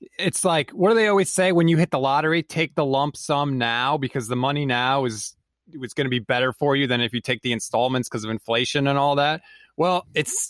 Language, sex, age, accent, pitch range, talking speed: English, male, 30-49, American, 130-175 Hz, 245 wpm